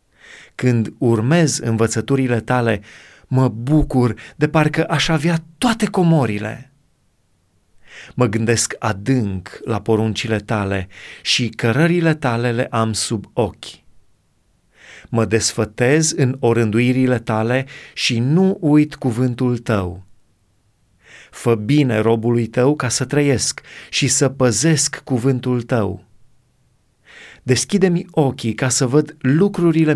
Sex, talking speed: male, 105 wpm